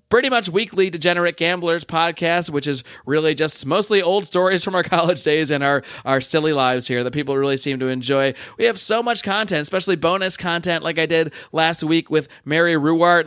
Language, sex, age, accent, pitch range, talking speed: English, male, 30-49, American, 150-190 Hz, 205 wpm